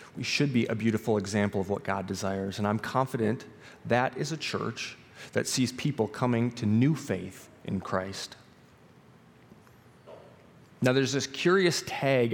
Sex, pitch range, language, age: male, 110-140 Hz, English, 30-49